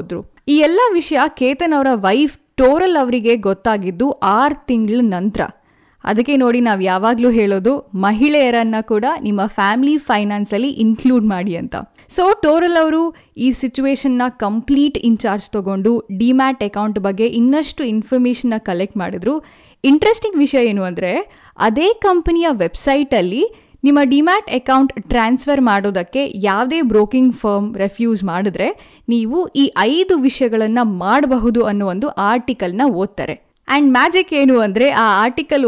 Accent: native